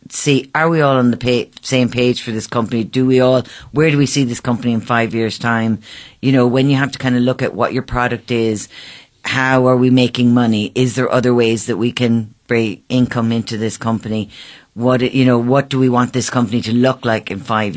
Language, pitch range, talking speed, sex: English, 115-140 Hz, 235 wpm, female